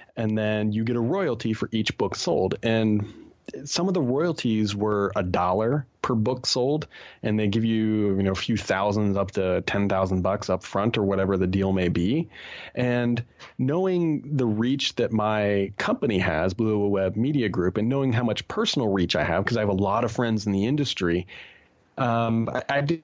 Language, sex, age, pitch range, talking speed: English, male, 30-49, 100-125 Hz, 195 wpm